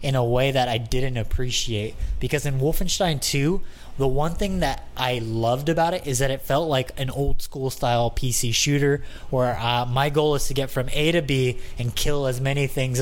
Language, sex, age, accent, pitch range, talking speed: English, male, 20-39, American, 125-150 Hz, 210 wpm